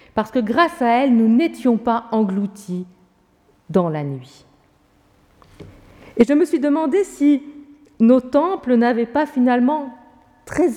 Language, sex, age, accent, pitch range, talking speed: French, female, 50-69, French, 195-290 Hz, 135 wpm